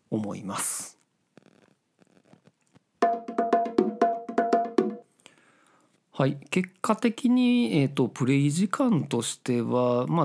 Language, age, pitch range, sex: Japanese, 40-59, 125-205 Hz, male